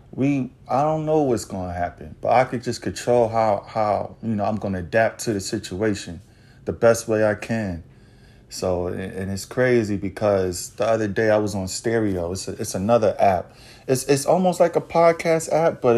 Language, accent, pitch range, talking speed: English, American, 110-130 Hz, 205 wpm